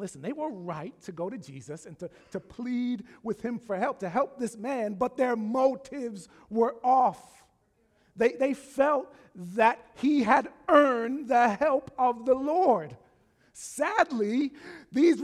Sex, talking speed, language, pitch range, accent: male, 155 wpm, English, 170-265 Hz, American